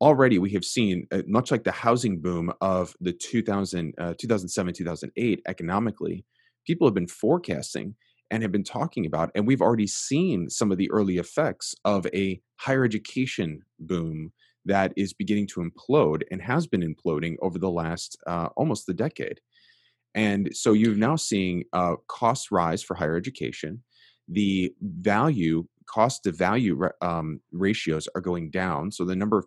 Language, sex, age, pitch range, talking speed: English, male, 30-49, 90-110 Hz, 155 wpm